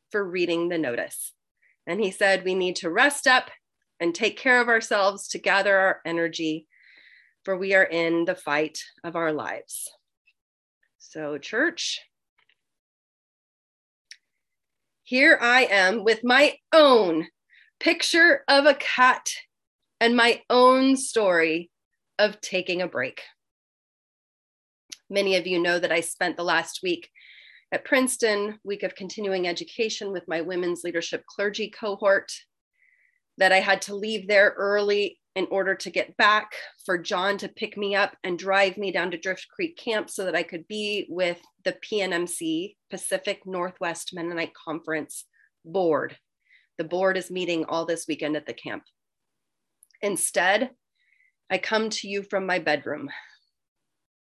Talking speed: 145 wpm